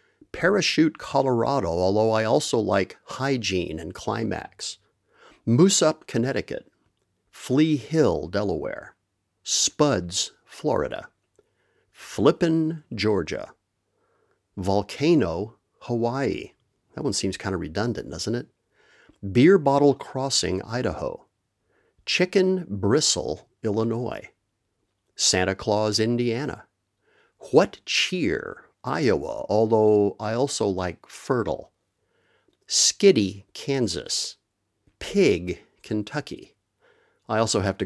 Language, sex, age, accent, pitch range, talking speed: English, male, 50-69, American, 100-150 Hz, 85 wpm